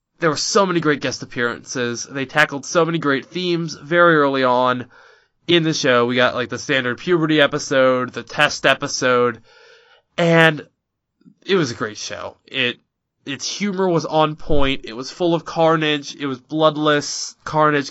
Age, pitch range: 20-39, 130-175 Hz